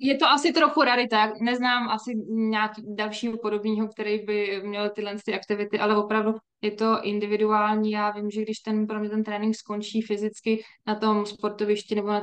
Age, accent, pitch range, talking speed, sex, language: 20-39, native, 205-215 Hz, 180 wpm, female, Czech